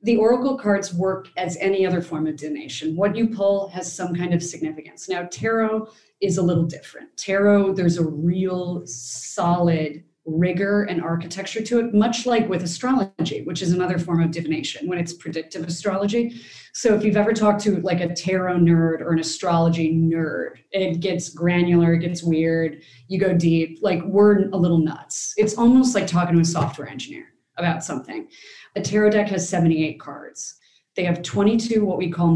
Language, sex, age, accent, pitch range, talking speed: English, female, 30-49, American, 170-200 Hz, 185 wpm